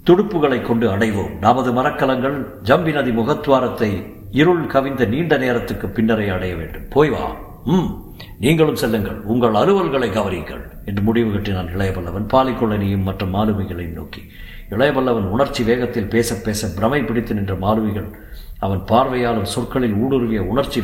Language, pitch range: Tamil, 95-115 Hz